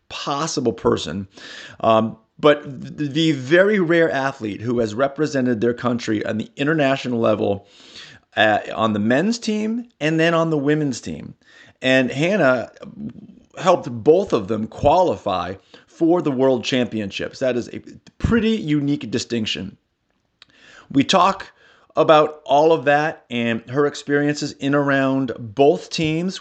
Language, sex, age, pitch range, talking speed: English, male, 30-49, 120-155 Hz, 130 wpm